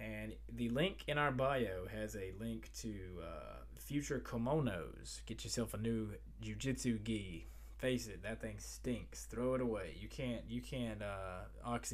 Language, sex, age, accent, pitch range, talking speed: English, male, 20-39, American, 95-120 Hz, 160 wpm